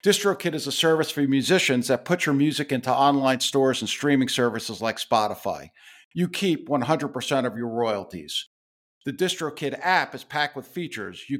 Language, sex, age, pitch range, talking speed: English, male, 50-69, 130-165 Hz, 170 wpm